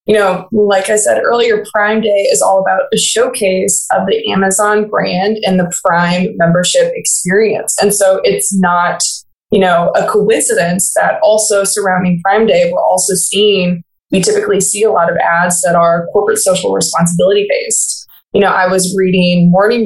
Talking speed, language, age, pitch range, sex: 170 wpm, English, 20-39, 180-220 Hz, female